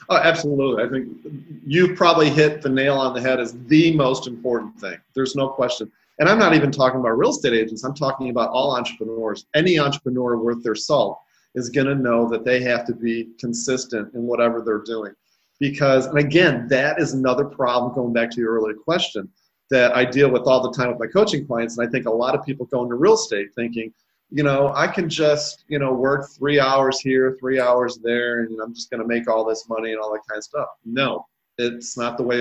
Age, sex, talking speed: 40-59, male, 230 wpm